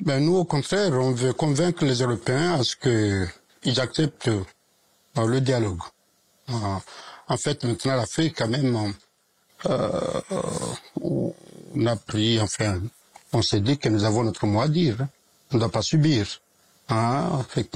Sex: male